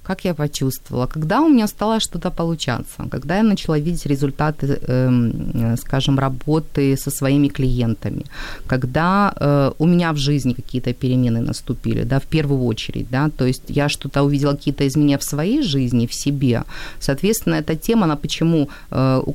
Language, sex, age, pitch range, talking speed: Ukrainian, female, 30-49, 135-165 Hz, 155 wpm